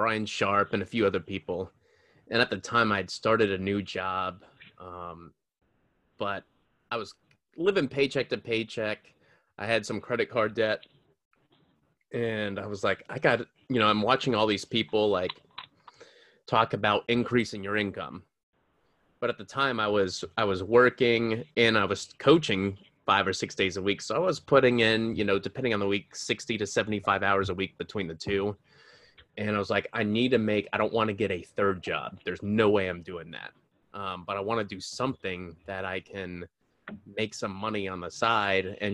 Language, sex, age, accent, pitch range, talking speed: English, male, 30-49, American, 95-110 Hz, 195 wpm